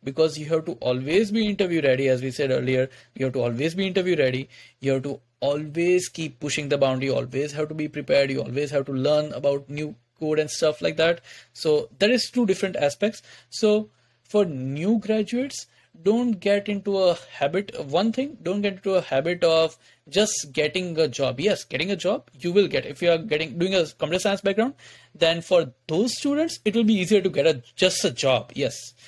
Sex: male